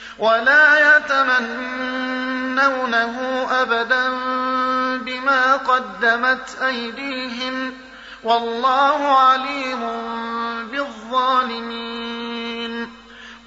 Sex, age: male, 30-49